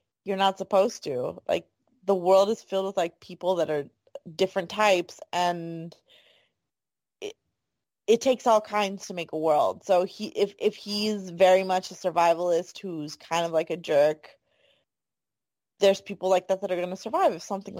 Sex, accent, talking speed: female, American, 175 wpm